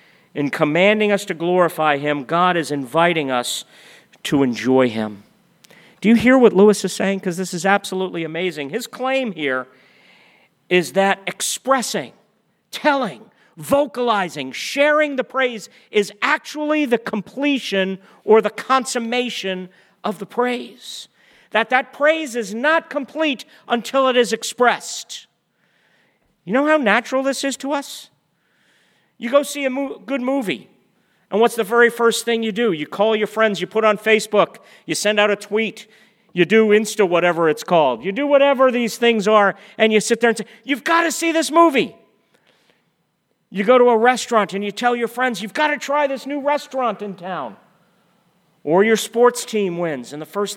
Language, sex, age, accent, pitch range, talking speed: English, male, 50-69, American, 190-250 Hz, 170 wpm